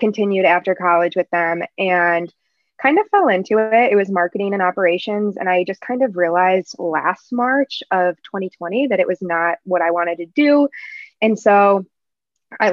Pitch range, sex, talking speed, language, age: 180-215 Hz, female, 180 wpm, English, 20-39